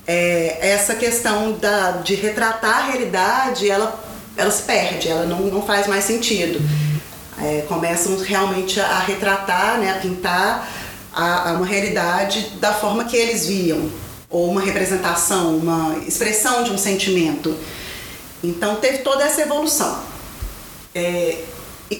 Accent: Brazilian